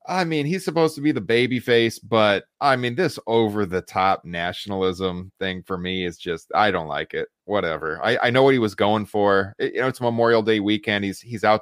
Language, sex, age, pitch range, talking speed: English, male, 30-49, 100-135 Hz, 215 wpm